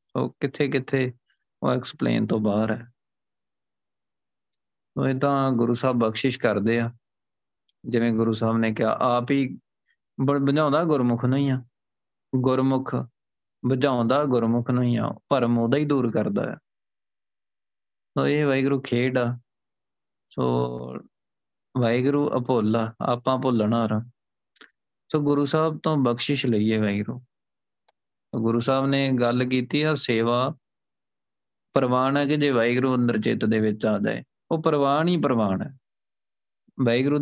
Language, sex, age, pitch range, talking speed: Punjabi, male, 20-39, 110-135 Hz, 110 wpm